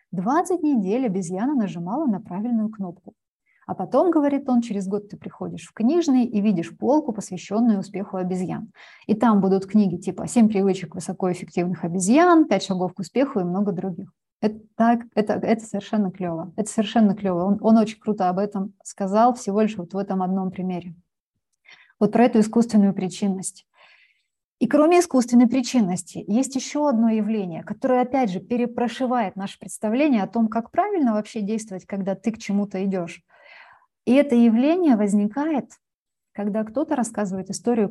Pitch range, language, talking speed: 190-240 Hz, Russian, 160 wpm